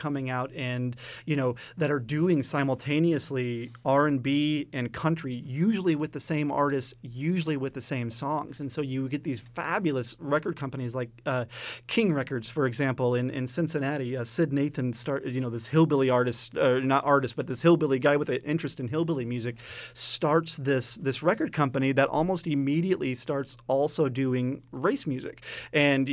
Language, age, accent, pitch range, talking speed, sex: English, 30-49, American, 125-150 Hz, 170 wpm, male